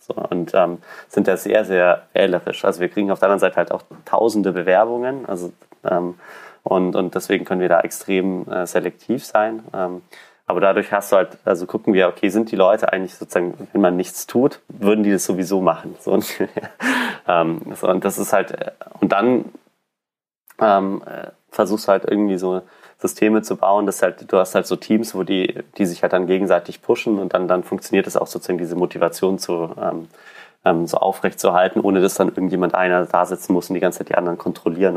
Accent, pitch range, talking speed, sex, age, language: German, 90-100 Hz, 195 wpm, male, 30-49, German